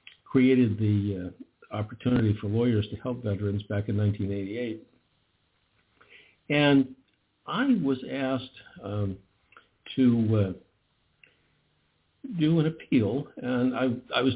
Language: English